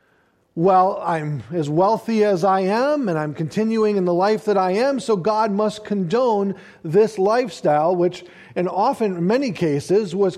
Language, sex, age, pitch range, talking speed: English, male, 50-69, 160-215 Hz, 160 wpm